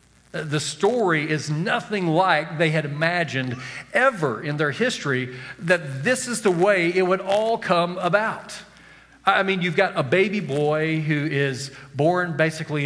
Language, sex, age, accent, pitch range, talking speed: English, male, 40-59, American, 145-185 Hz, 155 wpm